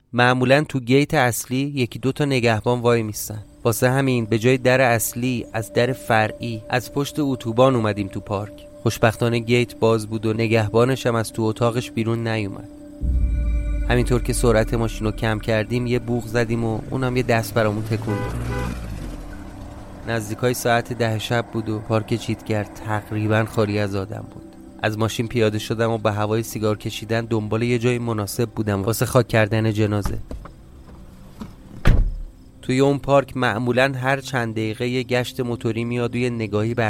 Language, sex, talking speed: Persian, male, 160 wpm